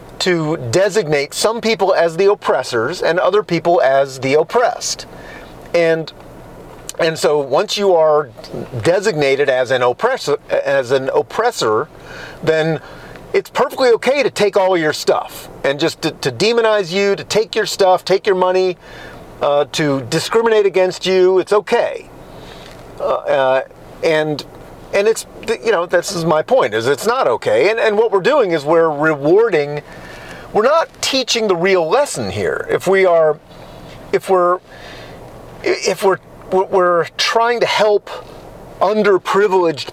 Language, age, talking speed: English, 40-59, 145 wpm